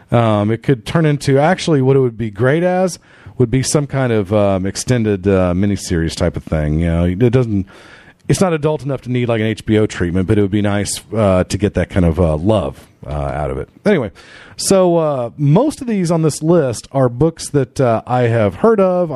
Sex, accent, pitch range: male, American, 95-135 Hz